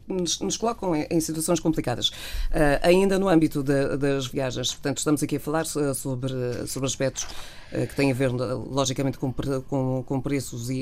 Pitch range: 130-160 Hz